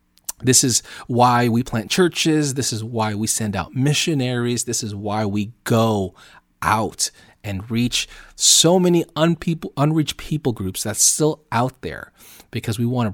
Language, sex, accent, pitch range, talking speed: English, male, American, 100-135 Hz, 160 wpm